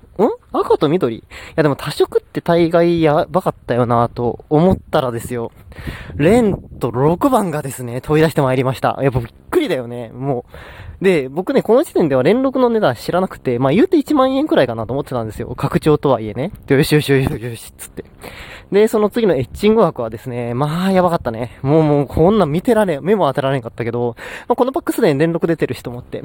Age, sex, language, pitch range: 20-39, male, Japanese, 120-180 Hz